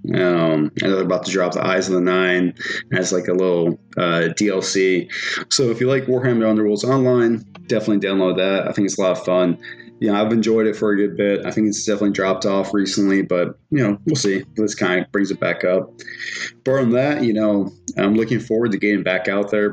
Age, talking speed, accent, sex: 20-39, 230 wpm, American, male